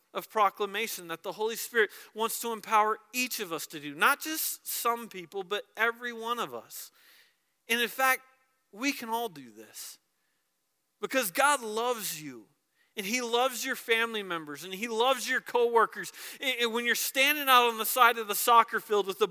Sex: male